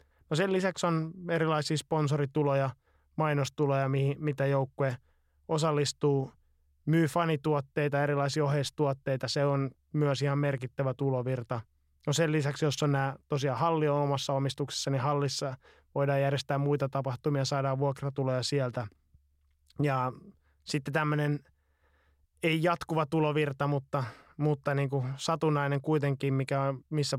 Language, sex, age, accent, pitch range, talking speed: Finnish, male, 20-39, native, 130-150 Hz, 120 wpm